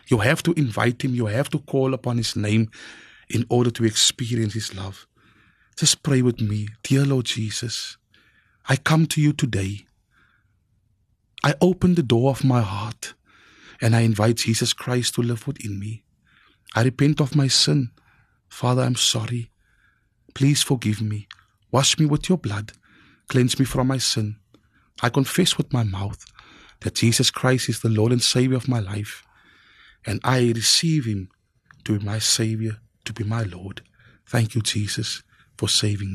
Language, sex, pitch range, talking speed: English, male, 110-135 Hz, 165 wpm